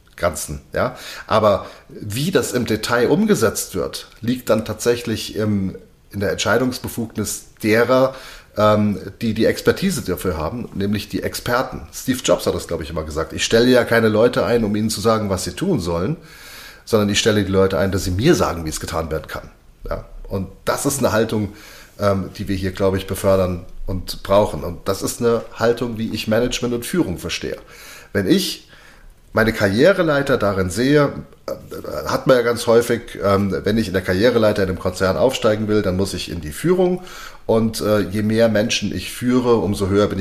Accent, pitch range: German, 95-115 Hz